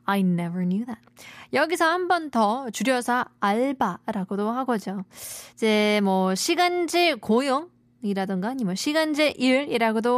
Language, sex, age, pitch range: Korean, female, 20-39, 200-310 Hz